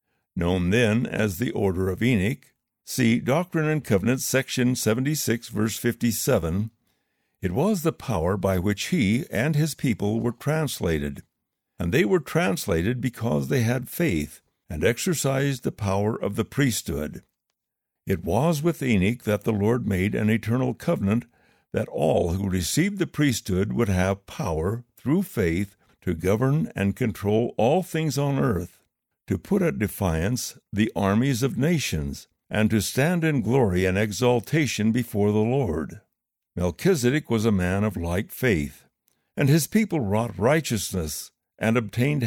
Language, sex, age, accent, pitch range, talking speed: English, male, 60-79, American, 100-135 Hz, 150 wpm